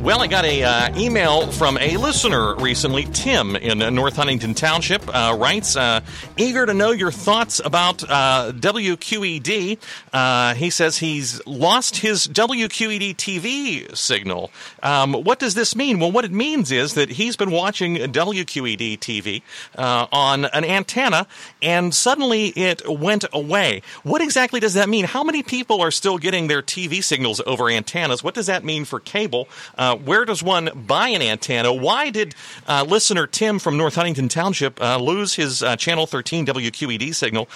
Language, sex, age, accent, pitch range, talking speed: English, male, 40-59, American, 135-205 Hz, 165 wpm